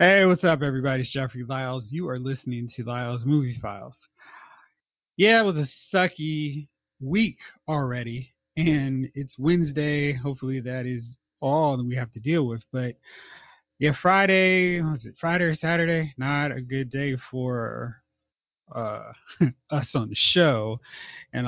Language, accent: English, American